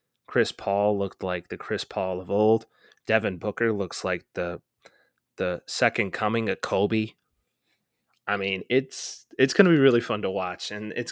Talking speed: 175 wpm